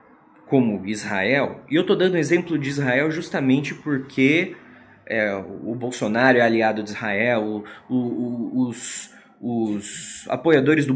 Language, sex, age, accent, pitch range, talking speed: Portuguese, male, 20-39, Brazilian, 120-155 Hz, 115 wpm